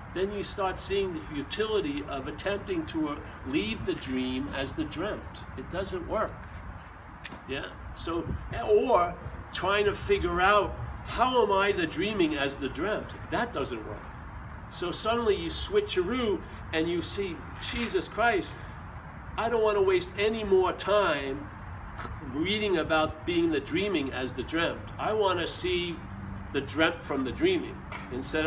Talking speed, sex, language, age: 150 wpm, male, English, 60-79